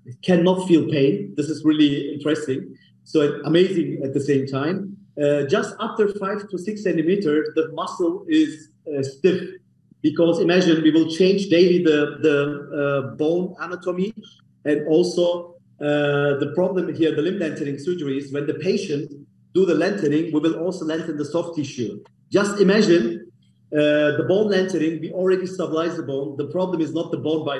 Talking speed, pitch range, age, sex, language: 170 wpm, 145-180 Hz, 40-59, male, English